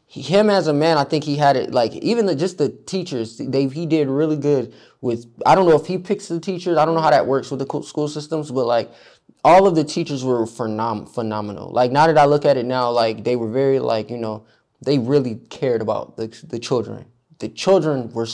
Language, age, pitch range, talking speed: English, 20-39, 115-150 Hz, 240 wpm